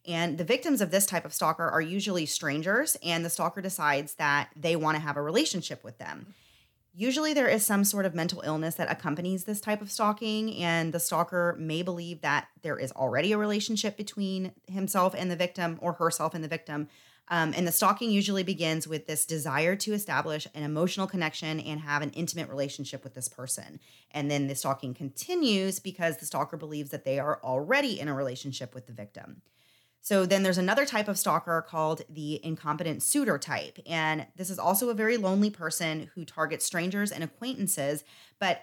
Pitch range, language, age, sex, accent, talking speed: 150-190 Hz, English, 30-49, female, American, 195 wpm